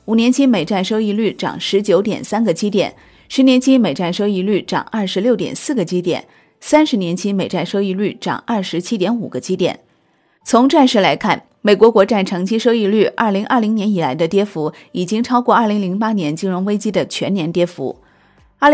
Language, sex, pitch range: Chinese, female, 180-230 Hz